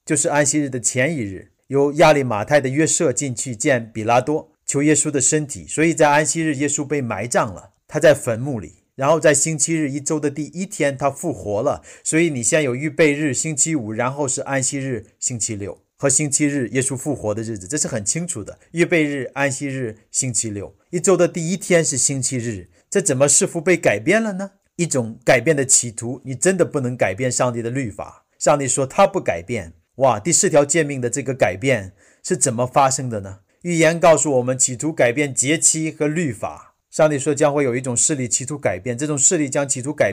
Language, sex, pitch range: Chinese, male, 125-155 Hz